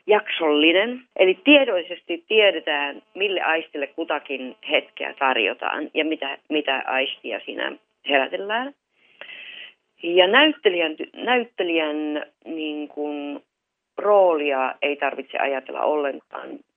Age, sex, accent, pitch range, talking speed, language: 30-49, female, native, 150-200 Hz, 90 wpm, Finnish